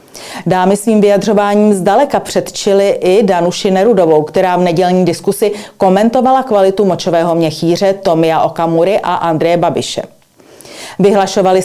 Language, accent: Czech, native